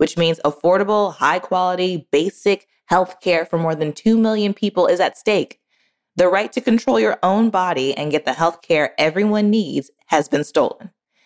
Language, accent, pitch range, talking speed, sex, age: English, American, 160-210 Hz, 175 wpm, female, 20-39